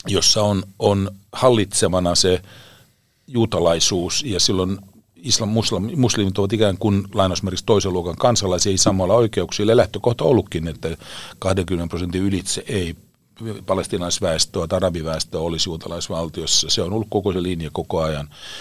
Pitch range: 95-125 Hz